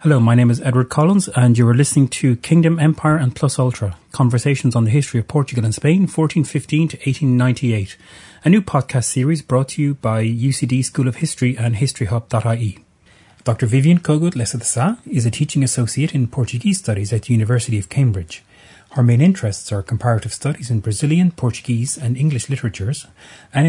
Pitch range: 110-140 Hz